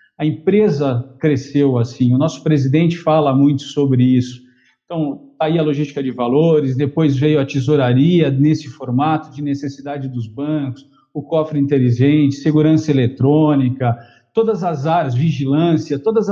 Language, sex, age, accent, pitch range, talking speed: Portuguese, male, 50-69, Brazilian, 135-170 Hz, 135 wpm